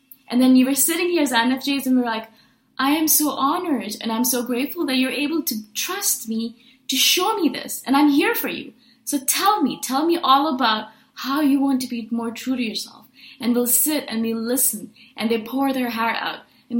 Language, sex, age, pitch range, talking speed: English, female, 20-39, 225-270 Hz, 230 wpm